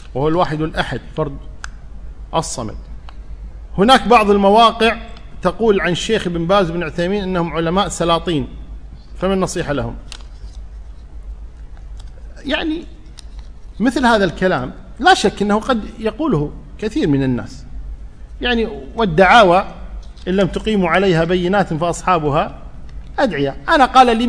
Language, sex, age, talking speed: Arabic, male, 50-69, 110 wpm